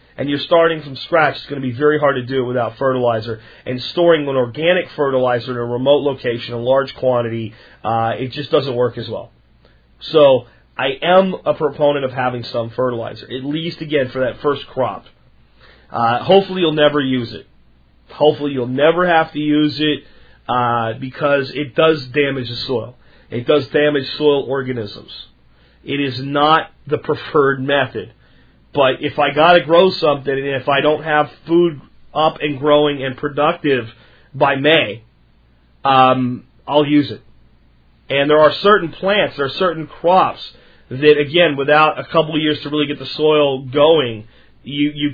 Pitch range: 125-150 Hz